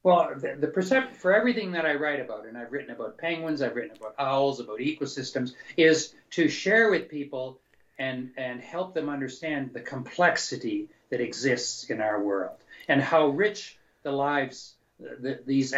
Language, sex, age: English, male, 60-79